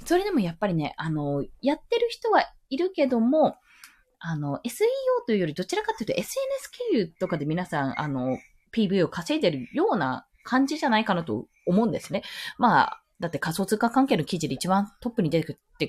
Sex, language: female, Japanese